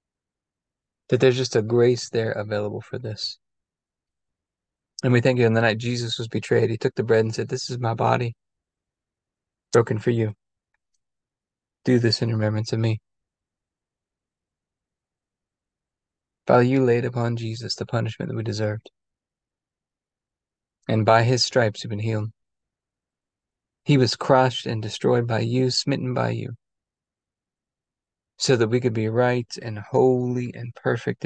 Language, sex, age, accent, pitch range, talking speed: English, male, 20-39, American, 110-125 Hz, 145 wpm